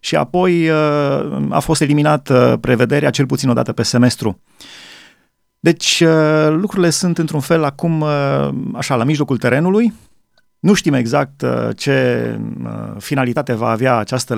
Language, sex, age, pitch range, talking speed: Romanian, male, 30-49, 120-155 Hz, 125 wpm